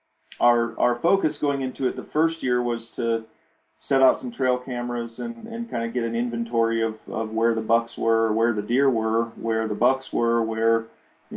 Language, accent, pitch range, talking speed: English, American, 110-120 Hz, 205 wpm